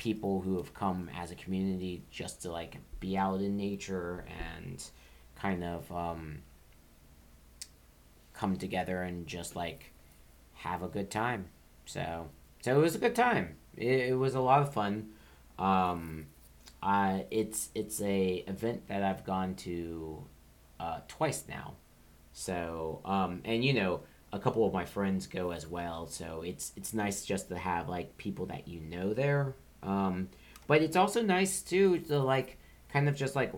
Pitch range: 80-105 Hz